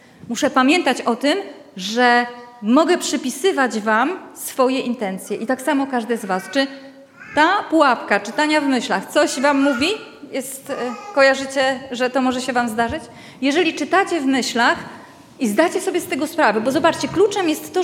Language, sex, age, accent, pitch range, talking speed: Polish, female, 30-49, native, 255-340 Hz, 160 wpm